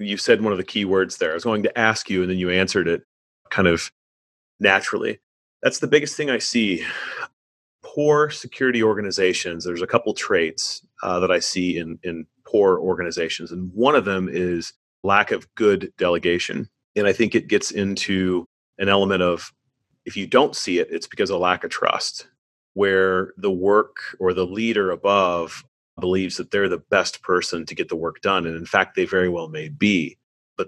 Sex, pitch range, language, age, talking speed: male, 90-120 Hz, English, 30-49, 195 wpm